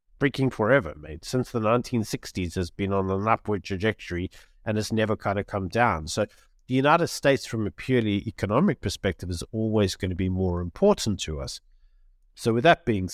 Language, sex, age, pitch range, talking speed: English, male, 50-69, 90-115 Hz, 185 wpm